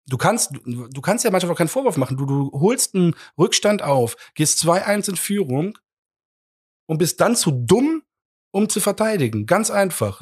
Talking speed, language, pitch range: 175 wpm, German, 115-160 Hz